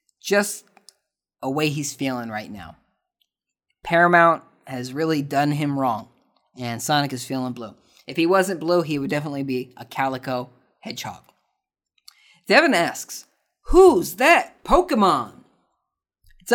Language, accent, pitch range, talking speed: English, American, 140-185 Hz, 125 wpm